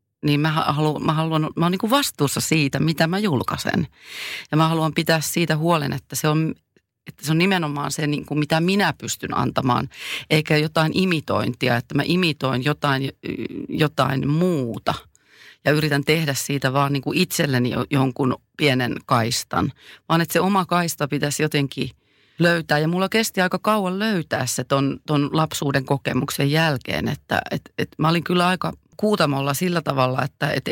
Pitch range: 135-160 Hz